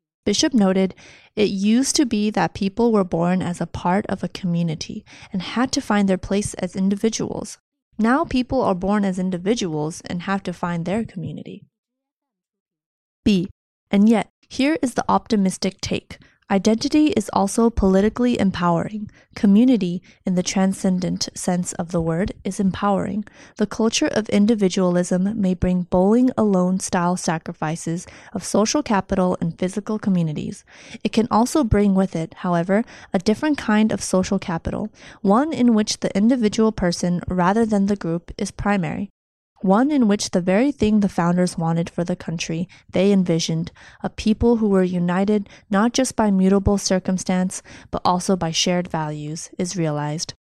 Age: 20-39